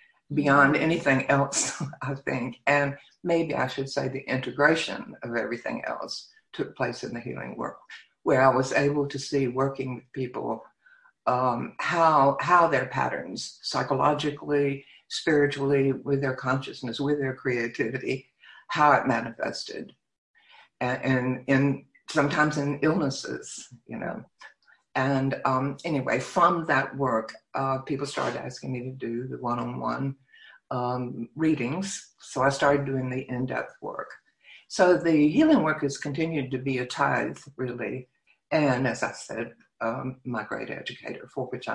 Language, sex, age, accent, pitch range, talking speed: English, female, 60-79, American, 130-150 Hz, 140 wpm